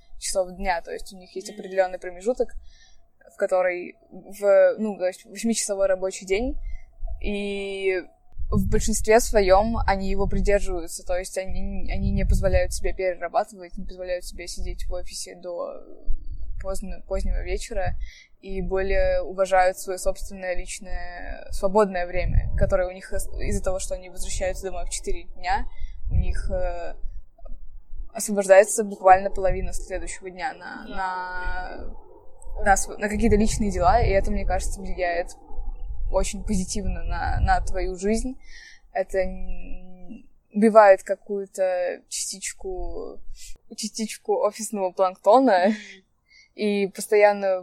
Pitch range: 185-210 Hz